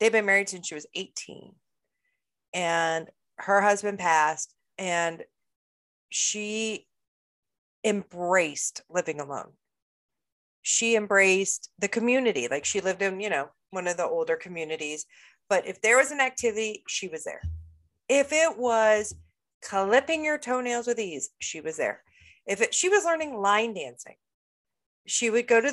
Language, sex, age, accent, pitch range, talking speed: English, female, 40-59, American, 175-235 Hz, 140 wpm